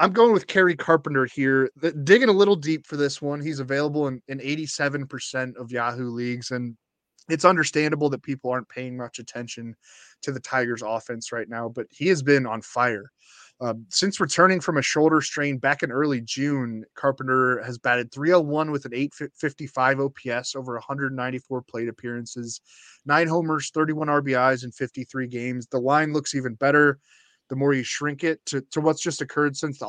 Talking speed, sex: 180 wpm, male